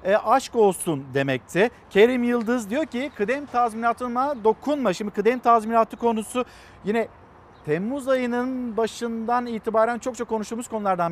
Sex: male